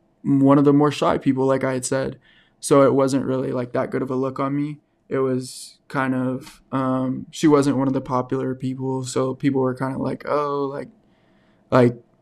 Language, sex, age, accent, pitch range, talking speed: English, male, 20-39, American, 130-140 Hz, 210 wpm